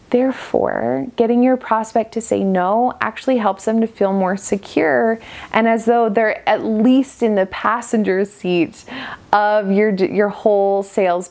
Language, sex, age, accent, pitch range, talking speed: English, female, 20-39, American, 205-250 Hz, 155 wpm